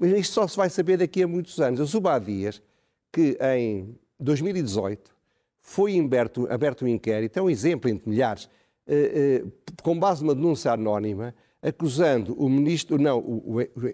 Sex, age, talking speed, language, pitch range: male, 50-69, 155 wpm, Portuguese, 120-165 Hz